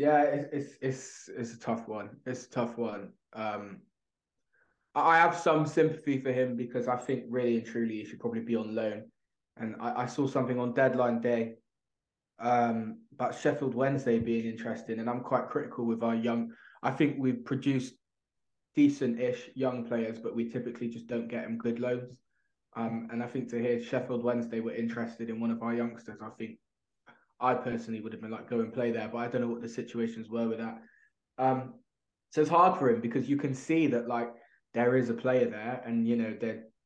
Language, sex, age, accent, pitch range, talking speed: English, male, 20-39, British, 115-125 Hz, 205 wpm